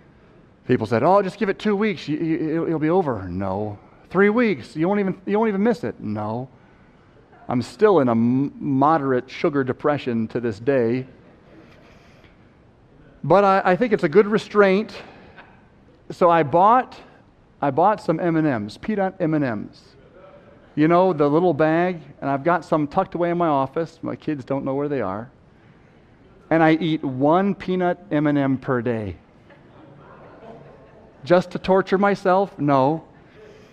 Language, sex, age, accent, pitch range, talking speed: English, male, 40-59, American, 130-180 Hz, 150 wpm